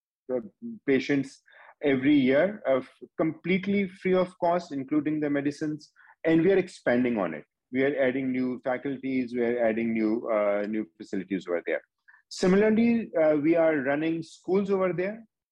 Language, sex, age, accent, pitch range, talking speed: English, male, 40-59, Indian, 130-165 Hz, 155 wpm